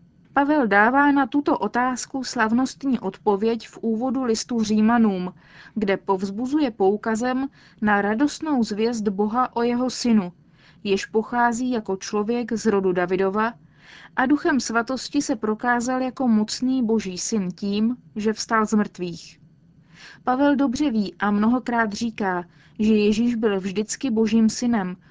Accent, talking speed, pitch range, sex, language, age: native, 130 wpm, 195-245 Hz, female, Czech, 20-39